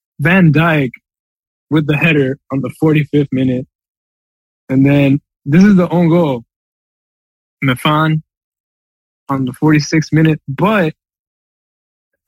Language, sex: English, male